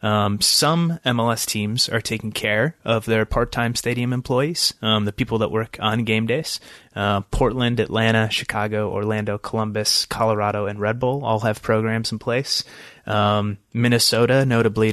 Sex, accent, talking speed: male, American, 155 wpm